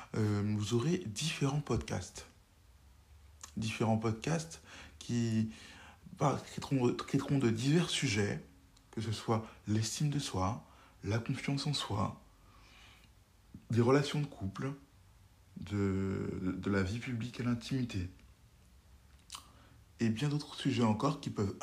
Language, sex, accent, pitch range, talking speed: French, male, French, 95-120 Hz, 120 wpm